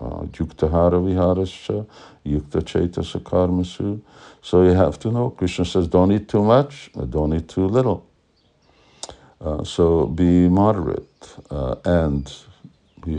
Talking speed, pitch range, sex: 115 wpm, 75-90 Hz, male